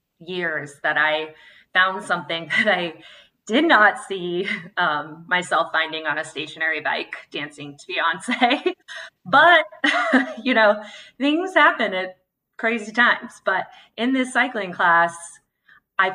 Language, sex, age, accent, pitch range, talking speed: English, female, 20-39, American, 165-210 Hz, 125 wpm